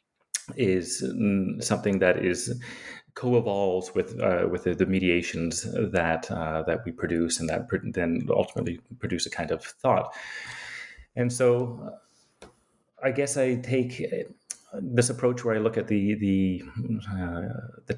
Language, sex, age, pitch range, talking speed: English, male, 30-49, 90-115 Hz, 140 wpm